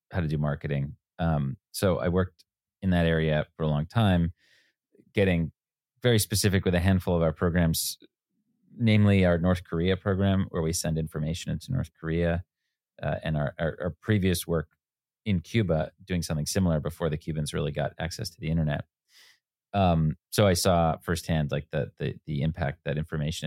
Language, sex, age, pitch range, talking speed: English, male, 30-49, 75-90 Hz, 175 wpm